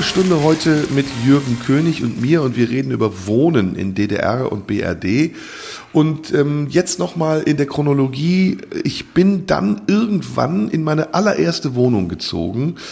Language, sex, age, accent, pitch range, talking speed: German, male, 50-69, German, 120-160 Hz, 150 wpm